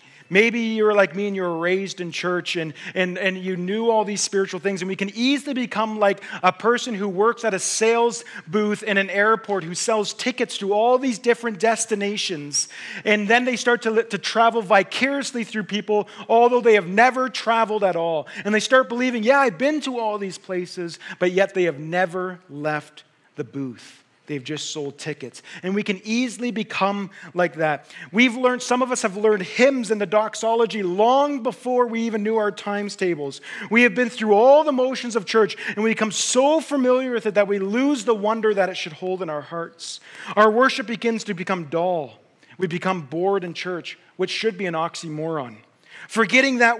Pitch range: 180-230 Hz